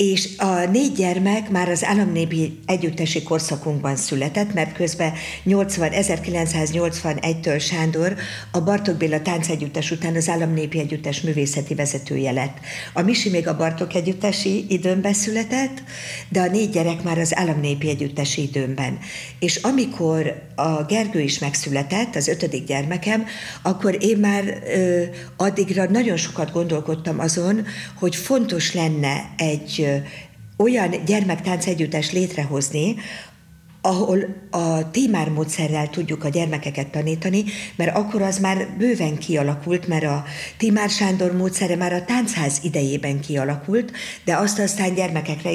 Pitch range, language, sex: 155-195 Hz, Hungarian, female